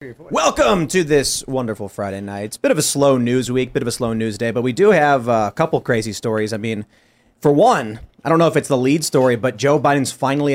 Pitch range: 120-150 Hz